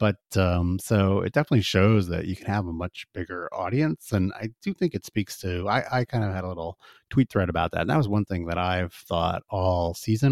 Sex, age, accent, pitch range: male, 30-49, American, 90-105 Hz